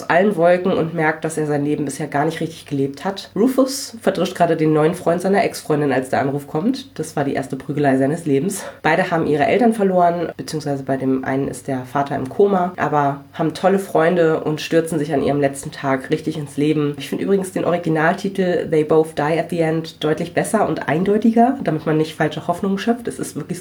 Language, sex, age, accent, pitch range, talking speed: German, female, 30-49, German, 140-180 Hz, 215 wpm